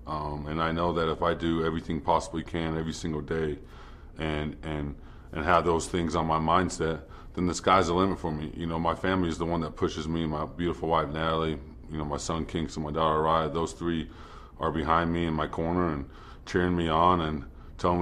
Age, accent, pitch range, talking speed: 30-49, American, 80-85 Hz, 225 wpm